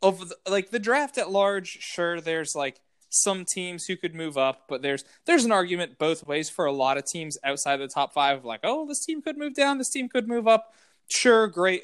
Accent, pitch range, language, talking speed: American, 150-215 Hz, English, 240 wpm